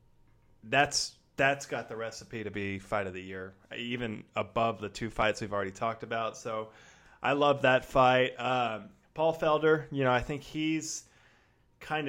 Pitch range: 110-140 Hz